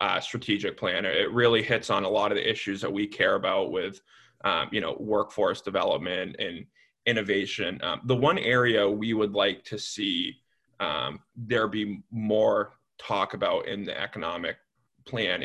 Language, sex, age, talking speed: English, male, 20-39, 165 wpm